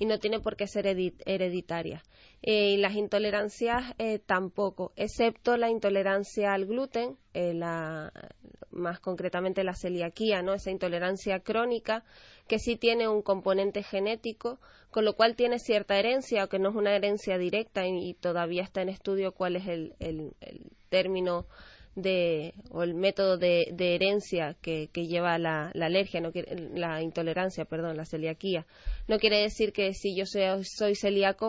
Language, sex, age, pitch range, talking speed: Spanish, female, 20-39, 175-205 Hz, 155 wpm